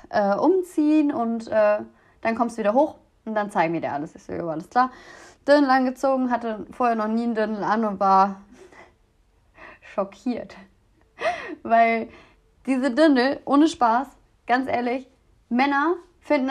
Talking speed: 140 wpm